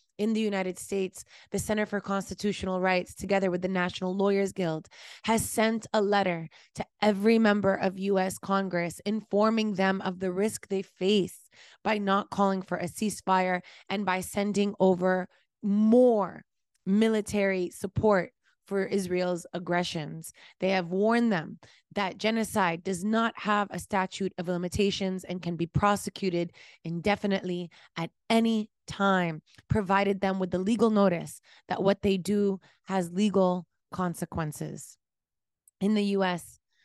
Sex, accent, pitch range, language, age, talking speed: female, American, 180-205 Hz, English, 20-39, 140 wpm